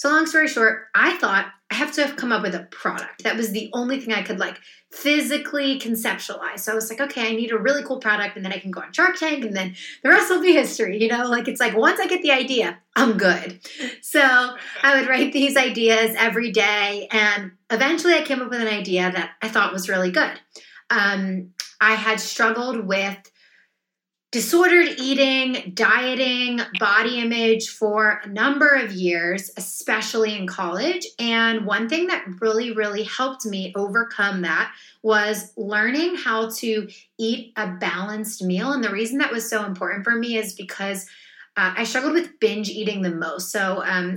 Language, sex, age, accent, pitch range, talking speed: English, female, 30-49, American, 205-260 Hz, 195 wpm